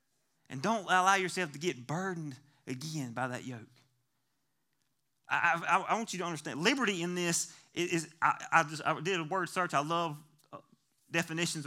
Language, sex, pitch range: English, male, 145-240 Hz